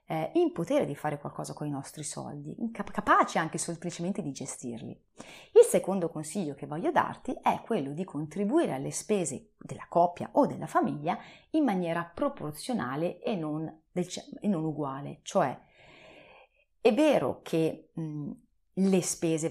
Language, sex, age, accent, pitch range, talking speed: Italian, female, 30-49, native, 150-210 Hz, 130 wpm